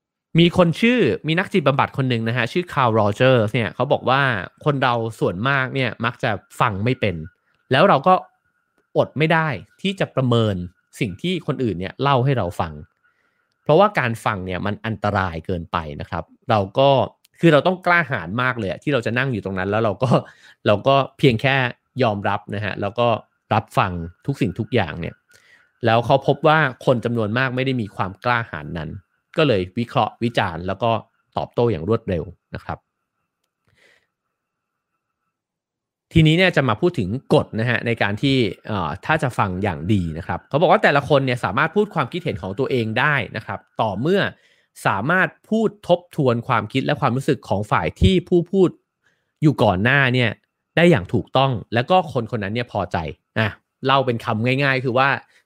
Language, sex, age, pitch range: English, male, 30-49, 105-150 Hz